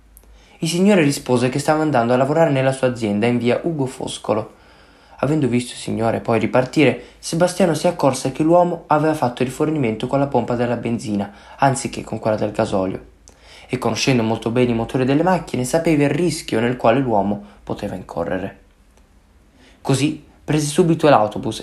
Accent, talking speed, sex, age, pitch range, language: native, 165 wpm, male, 20-39, 105-140 Hz, Italian